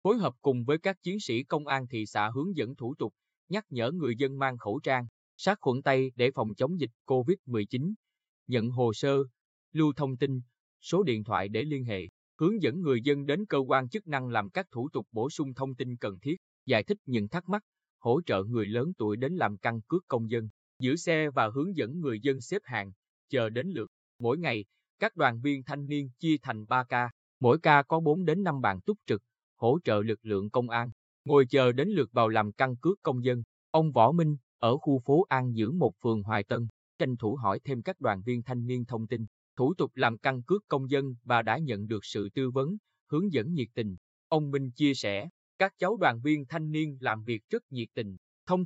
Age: 20-39